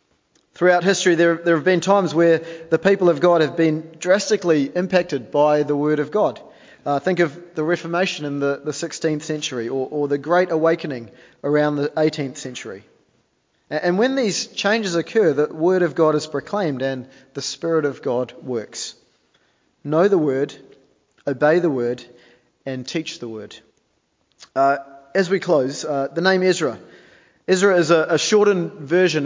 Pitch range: 135-165 Hz